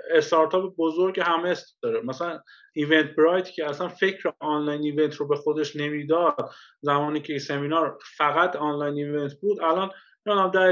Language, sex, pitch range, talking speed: Persian, male, 135-185 Hz, 145 wpm